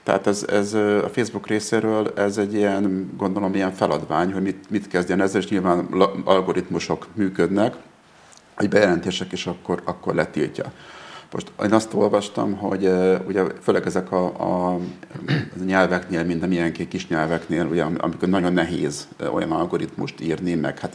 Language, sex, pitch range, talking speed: Hungarian, male, 90-110 Hz, 150 wpm